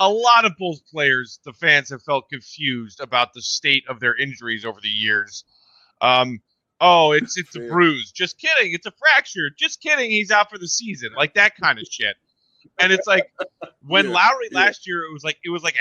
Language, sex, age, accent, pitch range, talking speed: English, male, 30-49, American, 140-195 Hz, 210 wpm